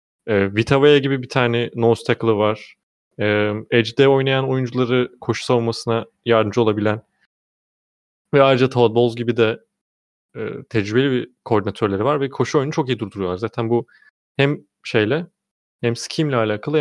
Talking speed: 140 wpm